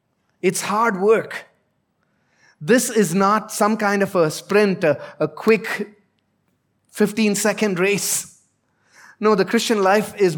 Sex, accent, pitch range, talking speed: male, Indian, 170-210 Hz, 120 wpm